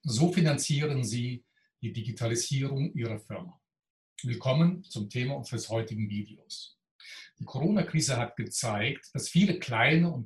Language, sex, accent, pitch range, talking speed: German, male, German, 115-150 Hz, 125 wpm